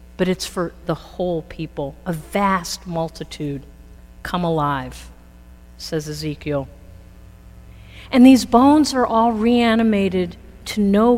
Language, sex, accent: English, female, American